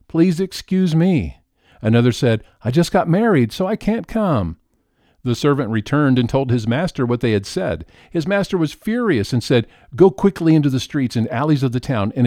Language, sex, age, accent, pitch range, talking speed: English, male, 50-69, American, 115-165 Hz, 200 wpm